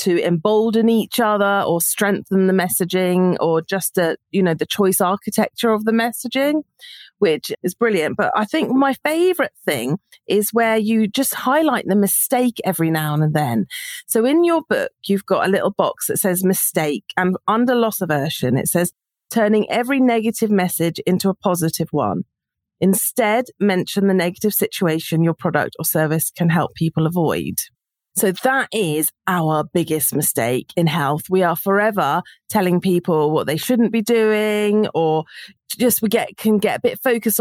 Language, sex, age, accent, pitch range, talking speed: English, female, 40-59, British, 180-240 Hz, 165 wpm